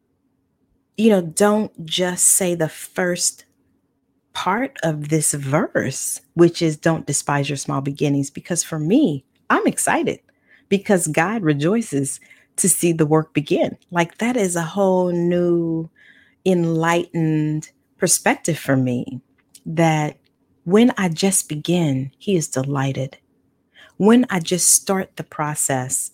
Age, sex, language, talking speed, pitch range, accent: 30-49, female, English, 125 wpm, 145-195 Hz, American